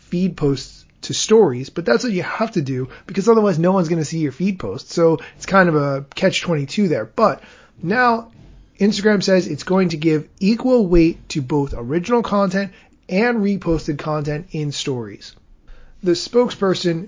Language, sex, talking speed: English, male, 170 wpm